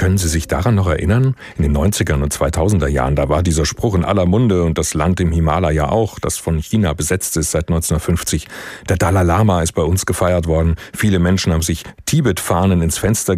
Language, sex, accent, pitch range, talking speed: German, male, German, 85-105 Hz, 210 wpm